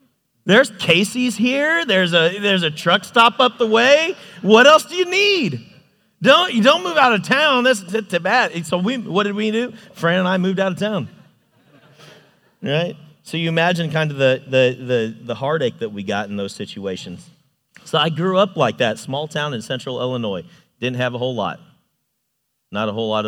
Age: 40-59